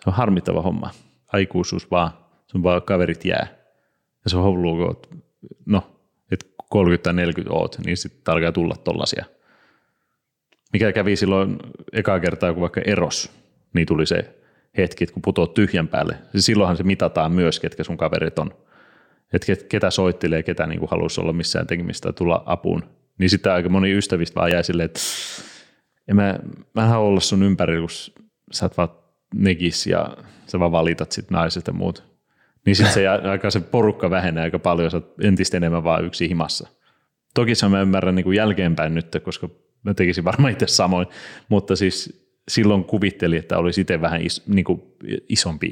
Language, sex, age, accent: Finnish, male, 30-49, native